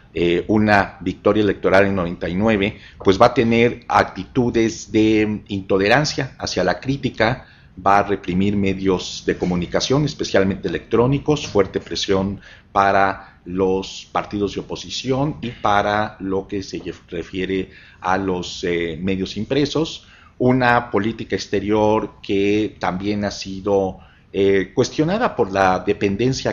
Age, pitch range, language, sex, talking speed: 50-69, 95-110 Hz, English, male, 120 wpm